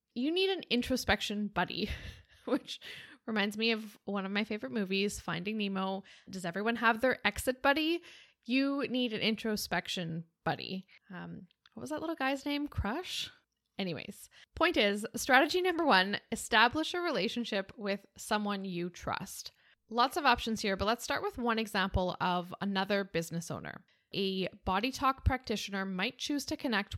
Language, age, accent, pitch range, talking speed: English, 10-29, American, 190-255 Hz, 155 wpm